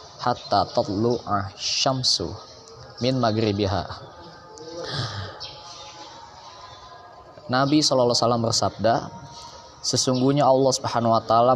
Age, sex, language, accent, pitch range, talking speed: 20-39, male, Indonesian, native, 105-130 Hz, 65 wpm